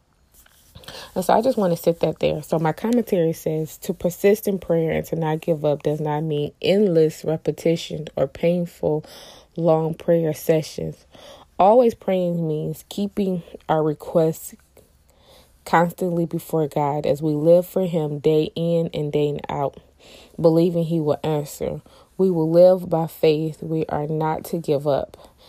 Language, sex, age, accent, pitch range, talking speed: English, female, 20-39, American, 145-170 Hz, 155 wpm